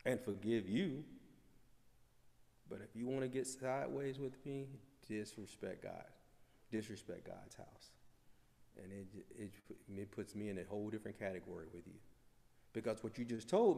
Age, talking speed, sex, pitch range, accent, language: 40-59, 150 wpm, male, 100-135 Hz, American, English